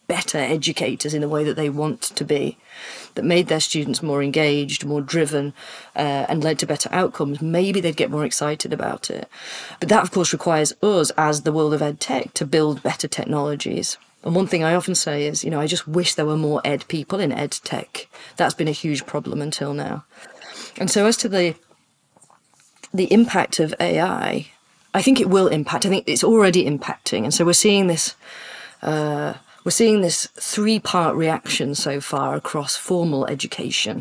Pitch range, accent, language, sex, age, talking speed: 145-175 Hz, British, English, female, 30-49, 190 wpm